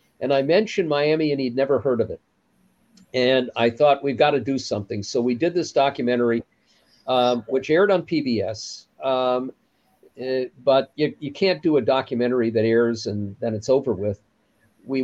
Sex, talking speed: male, 175 wpm